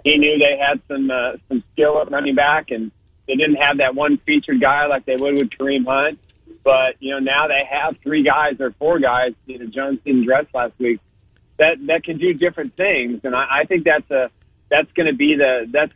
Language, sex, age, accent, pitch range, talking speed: English, male, 30-49, American, 130-150 Hz, 230 wpm